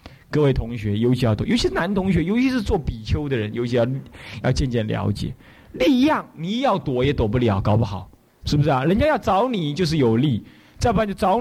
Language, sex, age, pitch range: Chinese, male, 20-39, 115-180 Hz